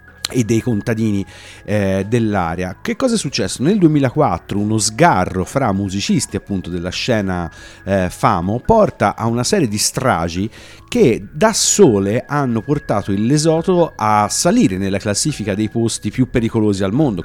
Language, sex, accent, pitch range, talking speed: Italian, male, native, 95-130 Hz, 145 wpm